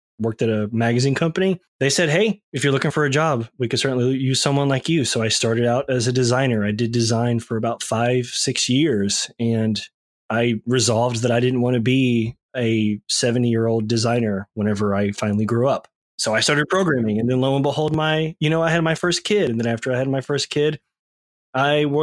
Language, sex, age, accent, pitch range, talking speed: English, male, 20-39, American, 115-140 Hz, 220 wpm